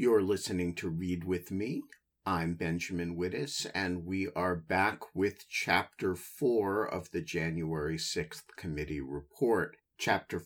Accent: American